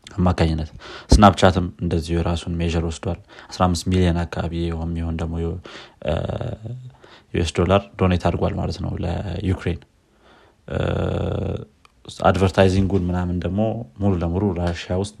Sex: male